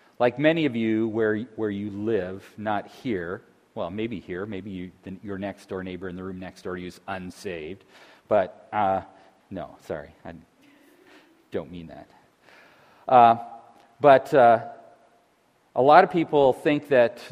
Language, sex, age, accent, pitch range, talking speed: English, male, 40-59, American, 95-125 Hz, 150 wpm